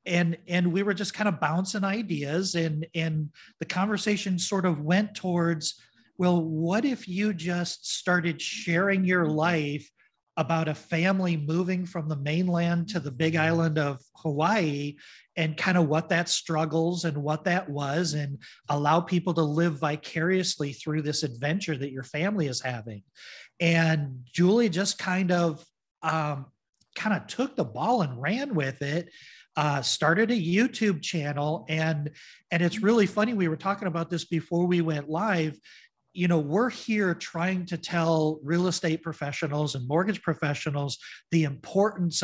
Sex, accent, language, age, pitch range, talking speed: male, American, English, 40-59, 150-180 Hz, 160 wpm